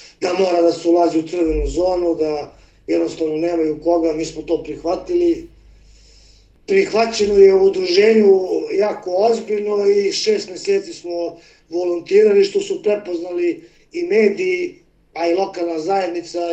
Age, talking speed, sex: 40-59, 125 wpm, male